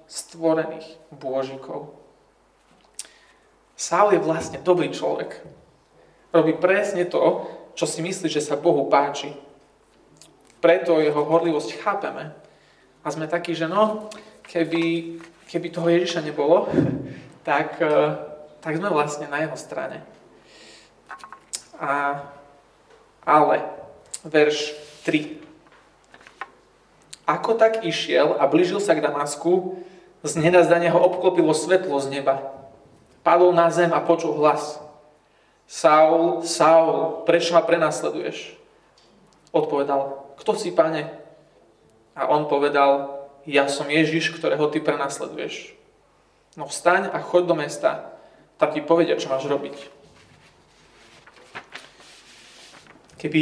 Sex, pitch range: male, 150-170 Hz